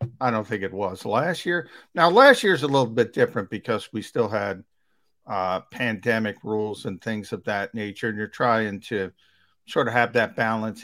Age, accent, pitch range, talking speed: 50-69, American, 105-125 Hz, 200 wpm